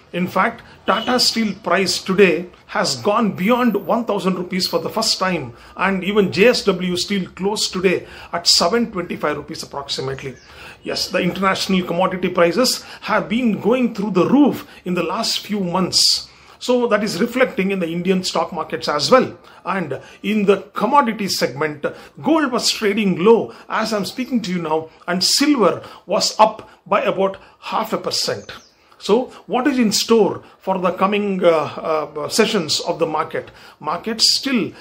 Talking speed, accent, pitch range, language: 160 wpm, Indian, 175-225 Hz, English